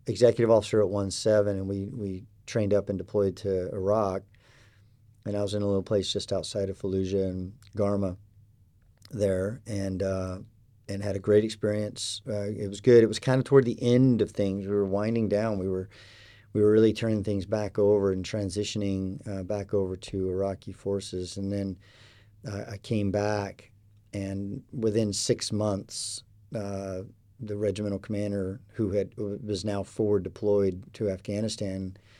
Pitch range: 100-110 Hz